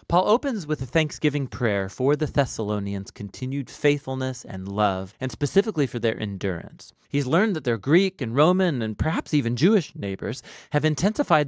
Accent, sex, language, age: American, male, English, 30-49